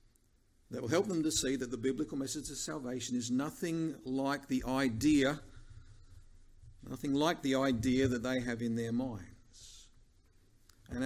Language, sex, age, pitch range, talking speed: English, male, 50-69, 105-140 Hz, 150 wpm